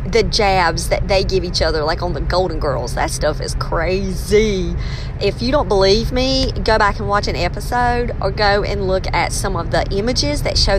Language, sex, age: English, female, 40-59